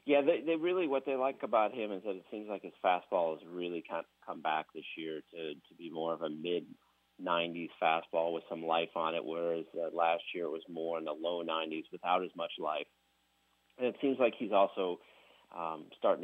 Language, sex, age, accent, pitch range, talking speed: English, male, 30-49, American, 80-105 Hz, 220 wpm